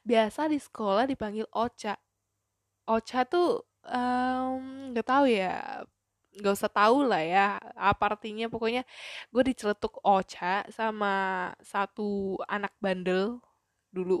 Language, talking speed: Indonesian, 115 wpm